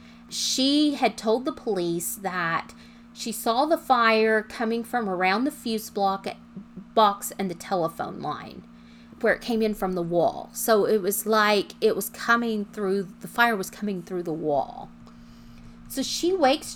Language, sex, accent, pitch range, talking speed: English, female, American, 200-305 Hz, 165 wpm